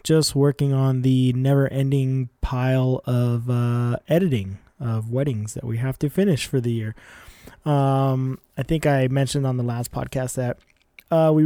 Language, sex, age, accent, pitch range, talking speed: English, male, 20-39, American, 120-150 Hz, 160 wpm